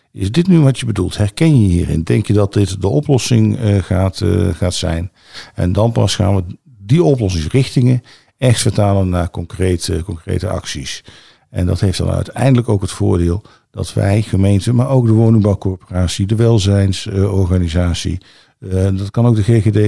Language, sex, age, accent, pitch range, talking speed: Dutch, male, 50-69, Dutch, 90-115 Hz, 160 wpm